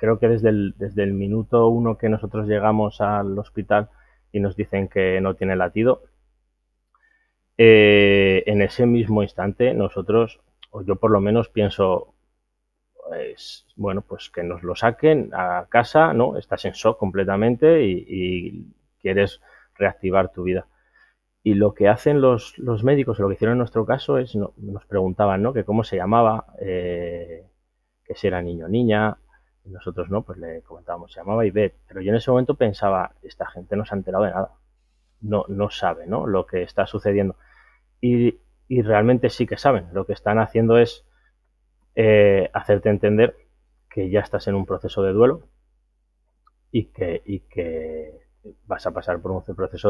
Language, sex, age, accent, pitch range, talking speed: Spanish, male, 20-39, Spanish, 95-110 Hz, 165 wpm